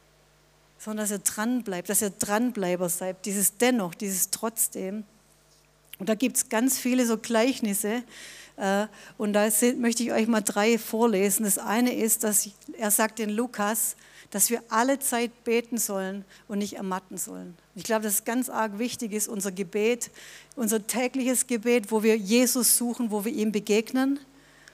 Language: German